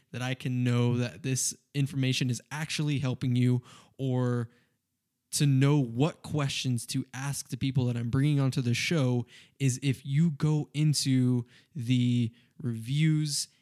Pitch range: 120-140 Hz